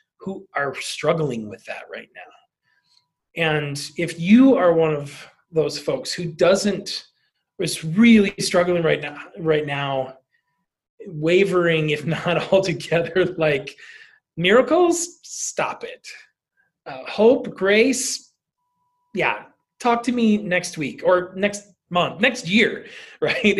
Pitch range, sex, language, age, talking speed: 155-215 Hz, male, English, 20-39, 120 wpm